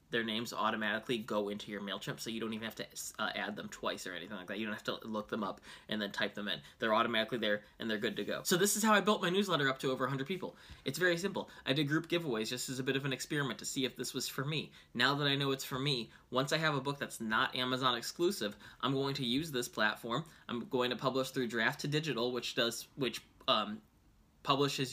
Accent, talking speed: American, 260 wpm